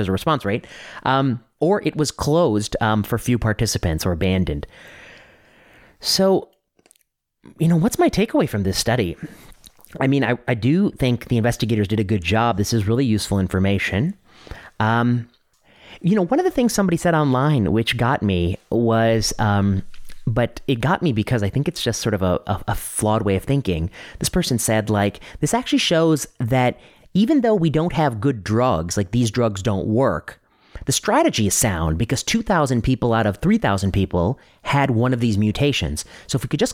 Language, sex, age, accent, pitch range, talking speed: English, male, 30-49, American, 105-150 Hz, 190 wpm